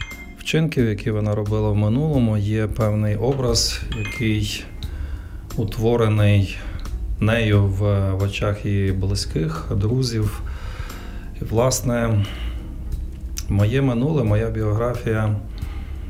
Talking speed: 80 wpm